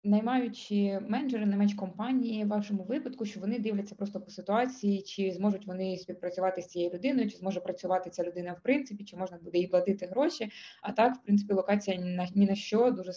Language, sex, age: Ukrainian, female, 20-39